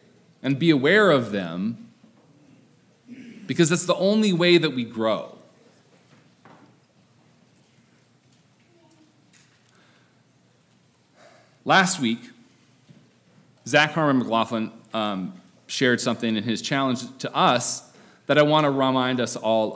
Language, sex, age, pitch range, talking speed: English, male, 40-59, 110-160 Hz, 95 wpm